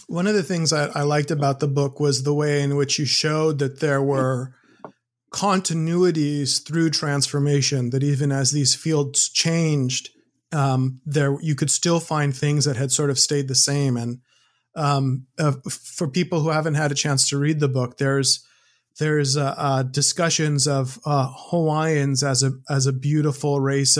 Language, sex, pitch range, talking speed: English, male, 135-155 Hz, 180 wpm